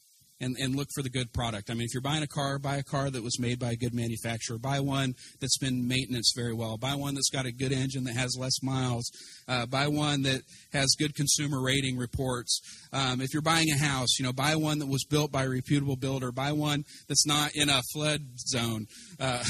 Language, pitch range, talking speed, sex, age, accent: English, 125-150 Hz, 235 wpm, male, 40-59, American